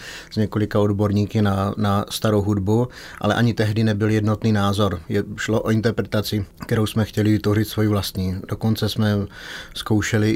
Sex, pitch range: male, 105-115 Hz